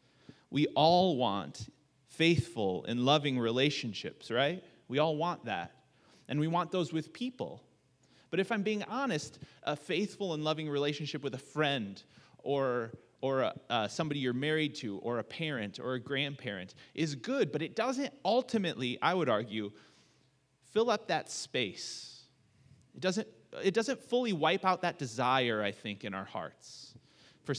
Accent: American